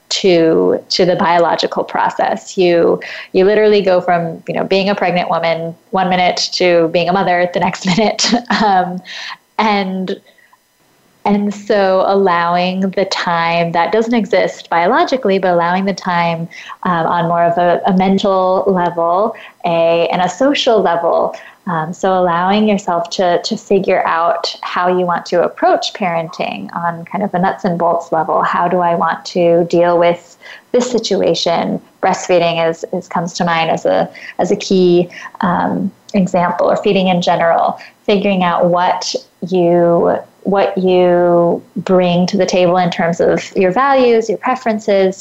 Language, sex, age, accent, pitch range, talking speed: English, female, 20-39, American, 170-200 Hz, 155 wpm